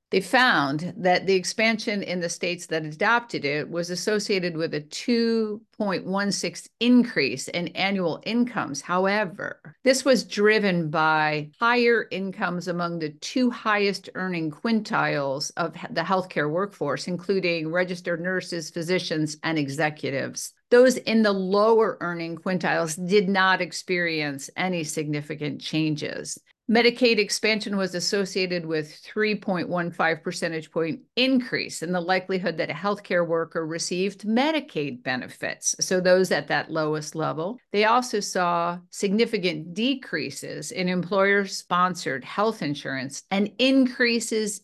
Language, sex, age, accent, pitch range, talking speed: English, female, 50-69, American, 165-215 Hz, 125 wpm